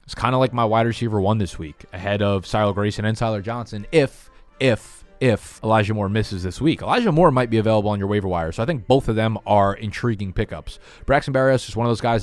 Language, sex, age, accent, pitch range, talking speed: English, male, 20-39, American, 95-125 Hz, 245 wpm